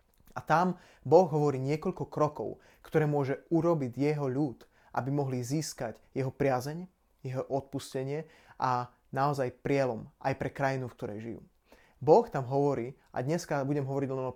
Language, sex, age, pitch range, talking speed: Slovak, male, 30-49, 130-155 Hz, 150 wpm